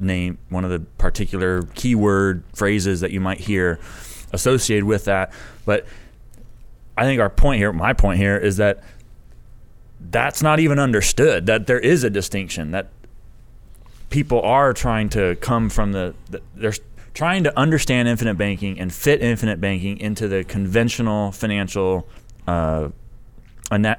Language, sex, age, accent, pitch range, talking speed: English, male, 30-49, American, 95-130 Hz, 145 wpm